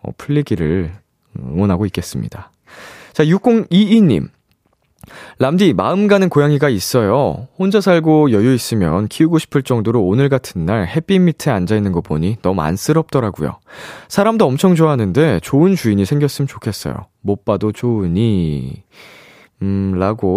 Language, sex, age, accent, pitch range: Korean, male, 20-39, native, 100-145 Hz